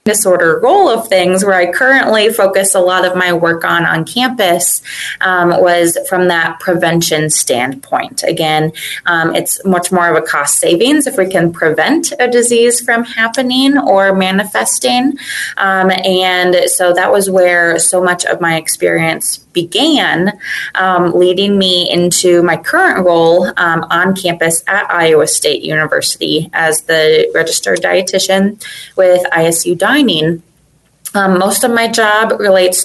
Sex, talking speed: female, 145 wpm